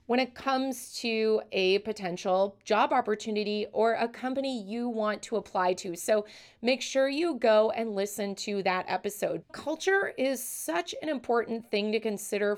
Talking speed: 160 wpm